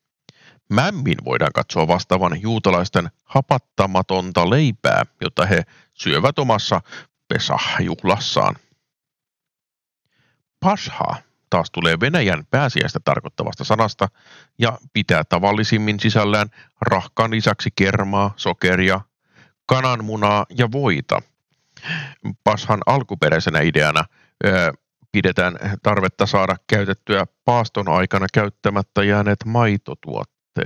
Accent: native